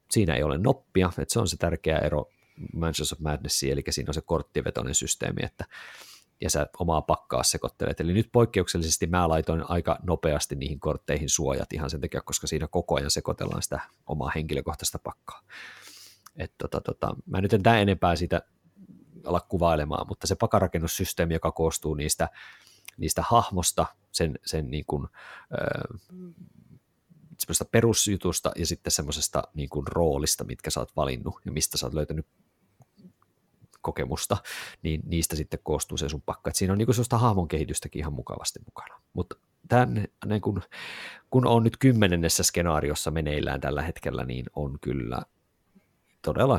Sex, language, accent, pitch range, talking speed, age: male, Finnish, native, 75-100 Hz, 150 wpm, 30-49